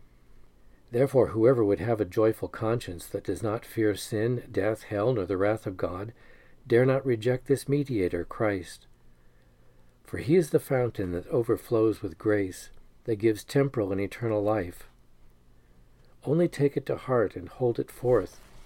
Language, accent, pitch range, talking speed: English, American, 100-125 Hz, 160 wpm